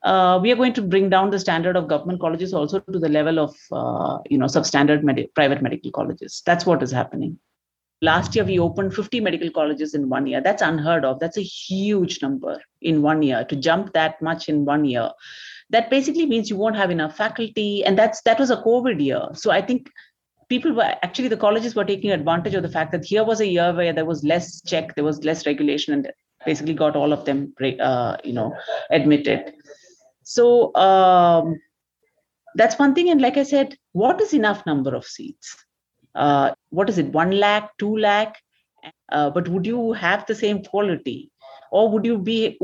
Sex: female